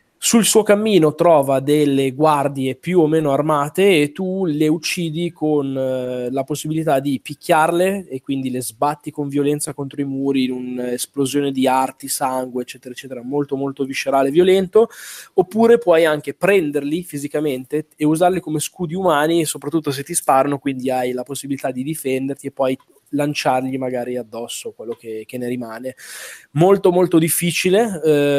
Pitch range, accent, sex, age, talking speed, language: 135-165 Hz, native, male, 20-39, 155 wpm, Italian